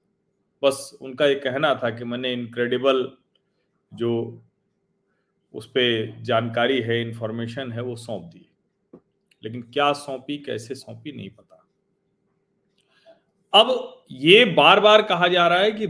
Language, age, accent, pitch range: Hindi, 40-59, native, 125-195 Hz